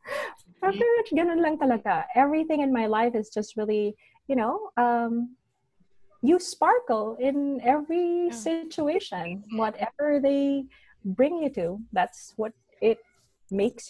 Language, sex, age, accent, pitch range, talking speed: English, female, 20-39, Filipino, 195-255 Hz, 105 wpm